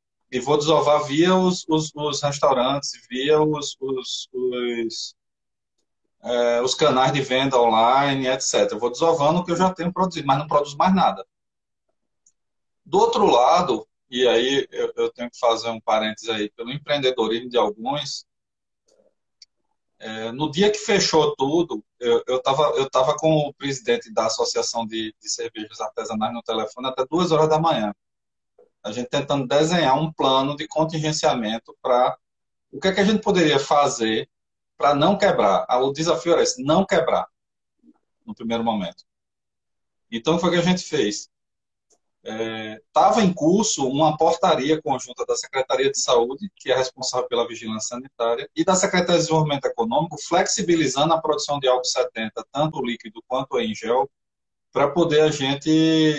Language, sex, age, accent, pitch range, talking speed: Portuguese, male, 20-39, Brazilian, 125-170 Hz, 160 wpm